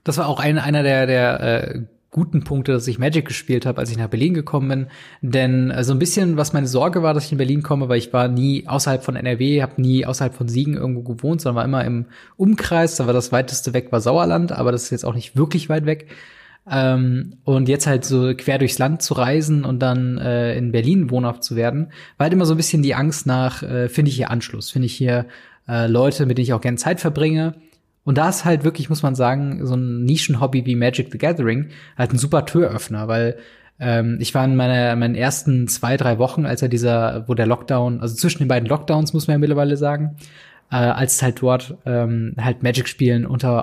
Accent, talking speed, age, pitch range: German, 230 wpm, 20-39, 125-150 Hz